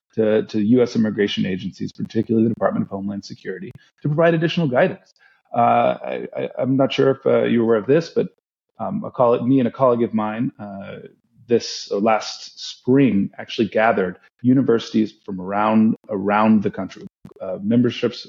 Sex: male